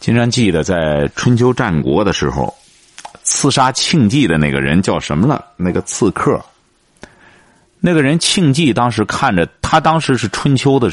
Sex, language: male, Chinese